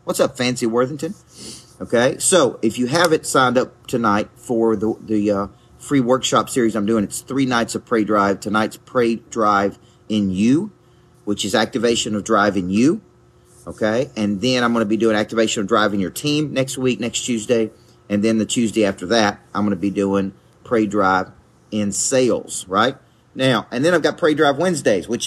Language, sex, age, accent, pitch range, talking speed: English, male, 40-59, American, 100-120 Hz, 195 wpm